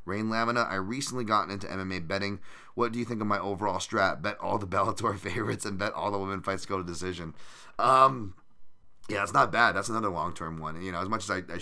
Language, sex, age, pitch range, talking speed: English, male, 30-49, 85-105 Hz, 250 wpm